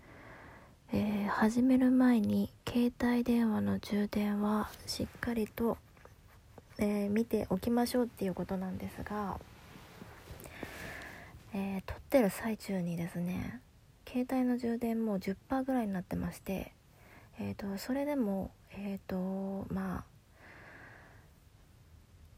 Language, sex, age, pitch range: Japanese, female, 20-39, 180-230 Hz